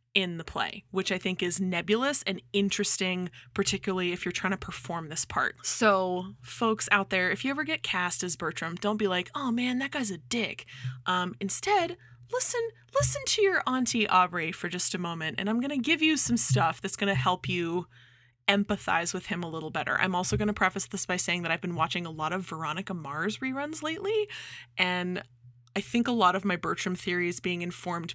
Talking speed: 215 wpm